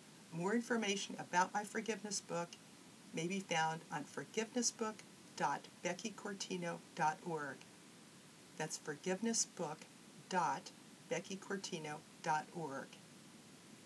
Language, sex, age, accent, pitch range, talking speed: English, female, 50-69, American, 165-215 Hz, 55 wpm